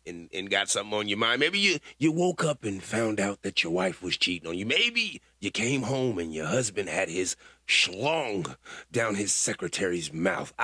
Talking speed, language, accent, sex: 205 wpm, English, American, male